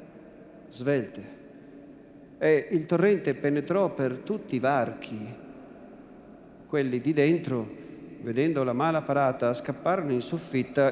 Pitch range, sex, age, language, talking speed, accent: 130-180 Hz, male, 50-69, Italian, 105 wpm, native